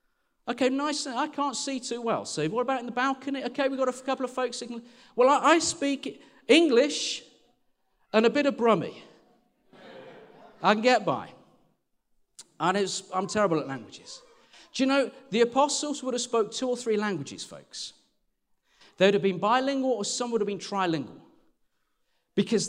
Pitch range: 205-265 Hz